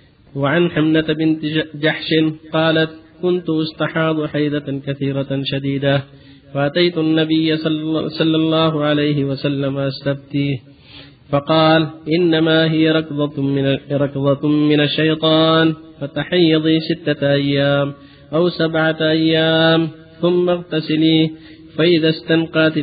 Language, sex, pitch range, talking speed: Arabic, male, 140-160 Hz, 85 wpm